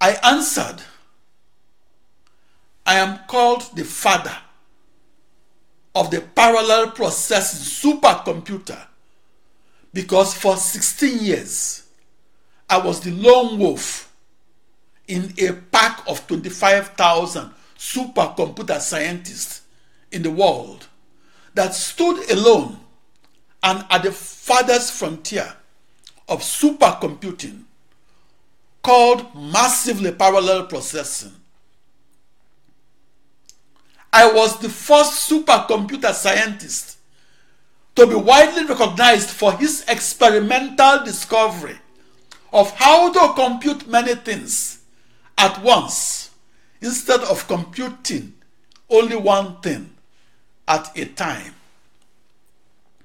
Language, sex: English, male